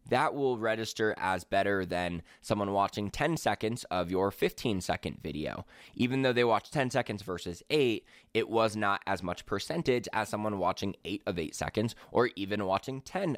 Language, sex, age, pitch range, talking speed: English, male, 20-39, 100-130 Hz, 175 wpm